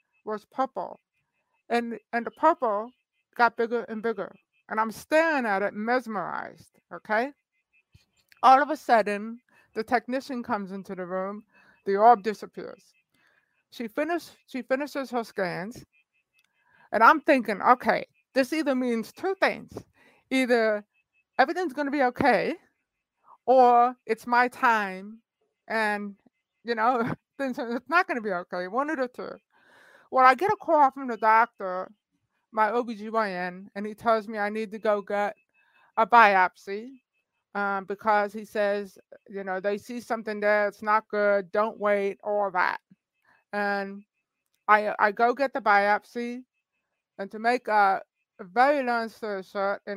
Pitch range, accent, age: 205-250 Hz, American, 50-69